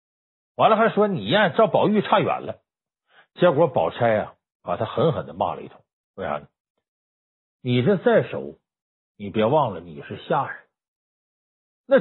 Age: 50-69